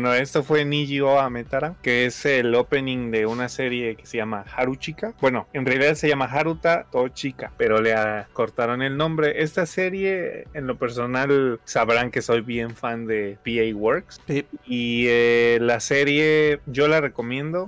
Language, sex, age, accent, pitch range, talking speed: Spanish, male, 20-39, Mexican, 110-140 Hz, 170 wpm